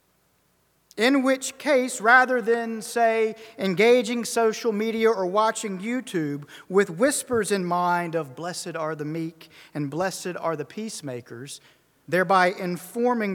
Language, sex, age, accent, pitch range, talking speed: English, male, 40-59, American, 165-225 Hz, 125 wpm